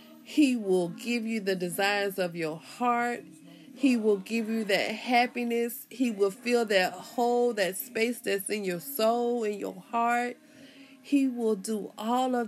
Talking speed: 165 wpm